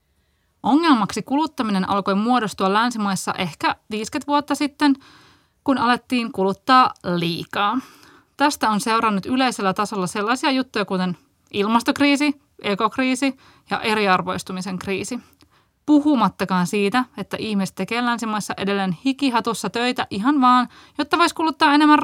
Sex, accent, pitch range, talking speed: female, native, 195-260 Hz, 110 wpm